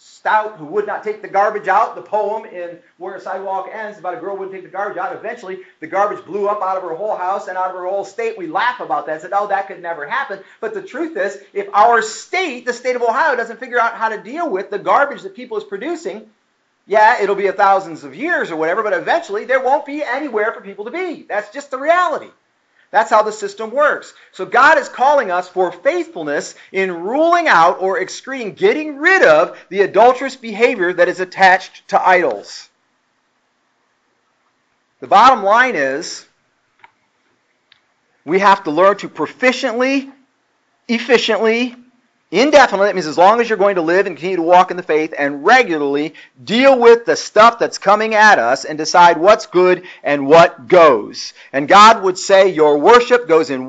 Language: English